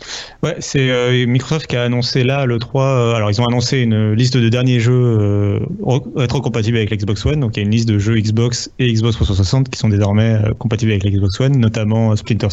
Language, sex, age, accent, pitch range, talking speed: French, male, 30-49, French, 105-120 Hz, 235 wpm